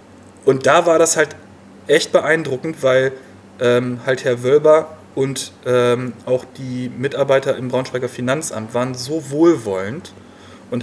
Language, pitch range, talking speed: German, 120-160 Hz, 135 wpm